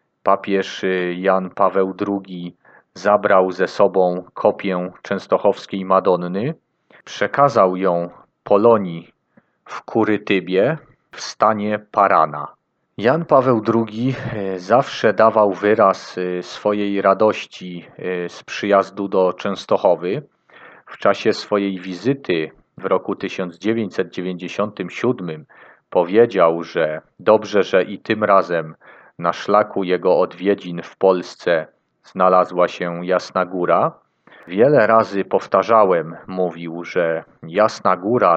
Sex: male